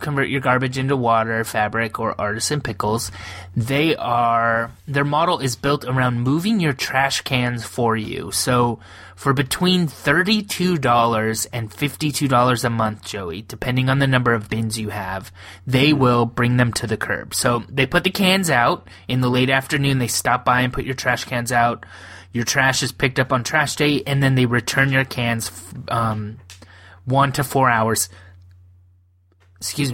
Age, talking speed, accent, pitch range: 20-39, 170 wpm, American, 105-140 Hz